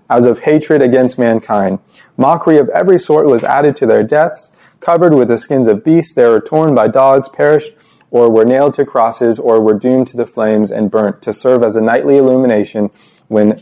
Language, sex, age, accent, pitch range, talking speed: English, male, 30-49, American, 120-155 Hz, 205 wpm